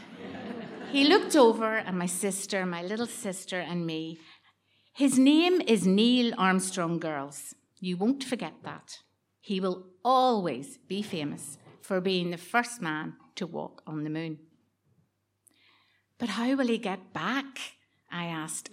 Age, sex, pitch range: 50-69, female, 160-215 Hz